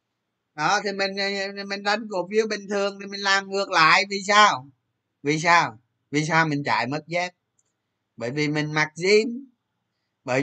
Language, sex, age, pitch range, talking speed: Vietnamese, male, 20-39, 145-190 Hz, 175 wpm